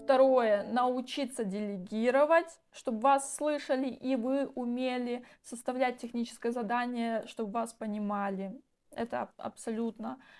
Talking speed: 105 wpm